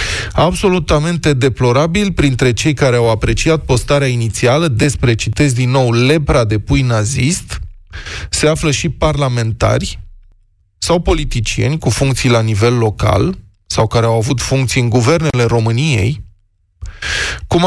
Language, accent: Romanian, native